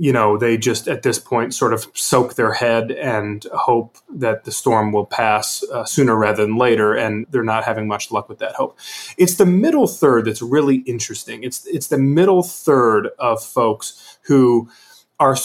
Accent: American